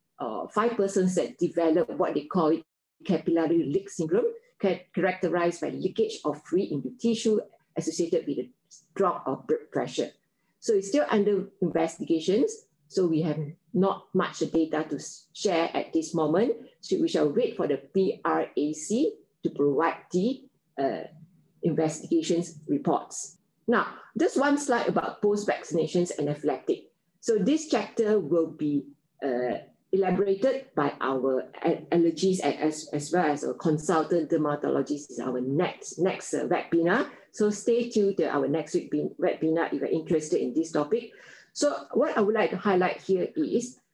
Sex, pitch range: female, 160-210 Hz